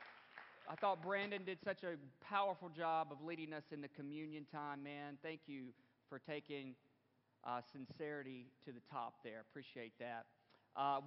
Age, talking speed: 40-59, 155 wpm